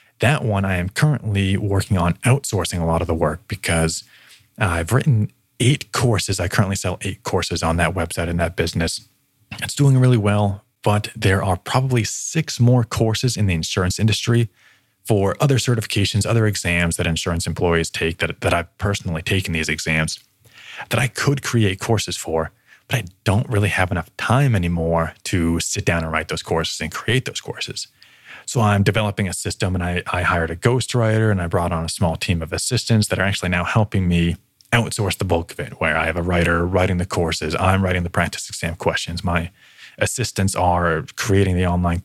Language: English